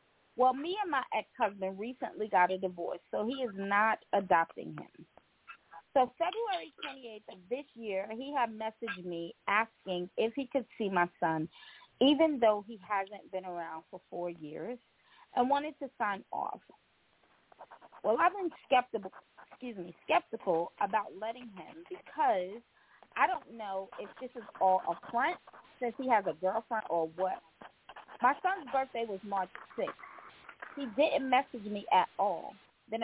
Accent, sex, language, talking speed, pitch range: American, female, English, 155 wpm, 185-255 Hz